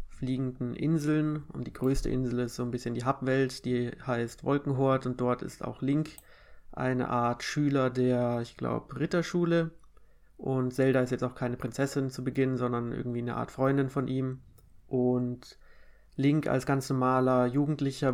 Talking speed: 160 wpm